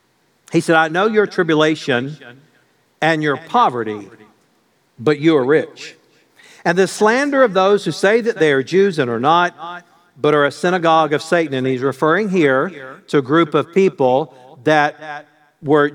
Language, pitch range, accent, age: English, 140-180 Hz, American, 50-69